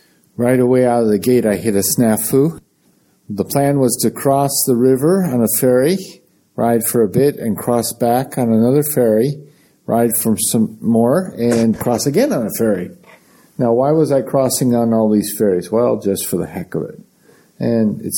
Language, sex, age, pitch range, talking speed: English, male, 50-69, 105-130 Hz, 190 wpm